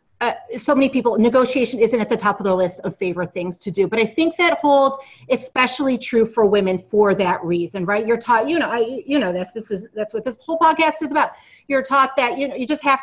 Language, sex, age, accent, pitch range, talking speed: English, female, 30-49, American, 205-280 Hz, 255 wpm